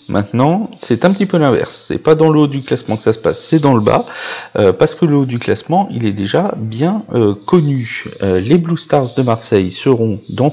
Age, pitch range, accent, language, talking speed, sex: 40-59, 100-135 Hz, French, French, 240 wpm, male